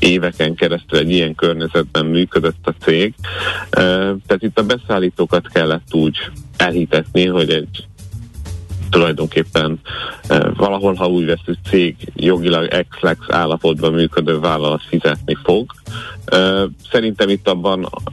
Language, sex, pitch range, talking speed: Hungarian, male, 80-100 Hz, 120 wpm